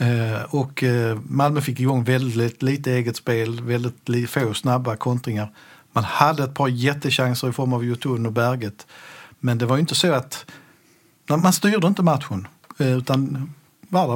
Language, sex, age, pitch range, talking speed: Swedish, male, 50-69, 120-150 Hz, 150 wpm